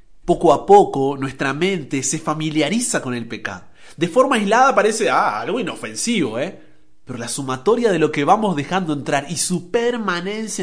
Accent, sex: Argentinian, male